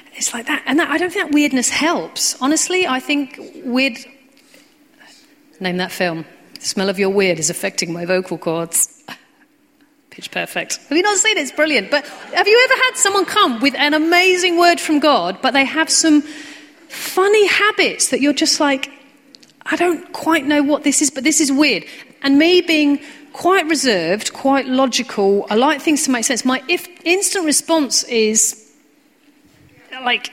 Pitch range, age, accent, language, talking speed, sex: 210-310 Hz, 40-59, British, English, 180 wpm, female